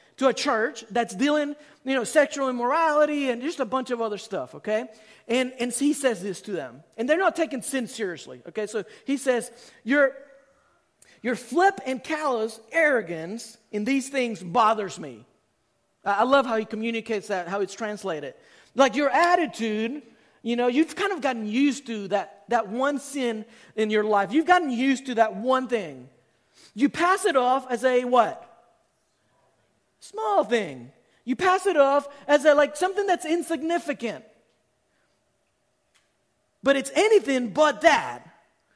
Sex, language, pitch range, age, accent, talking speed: male, English, 220-285 Hz, 40-59, American, 160 wpm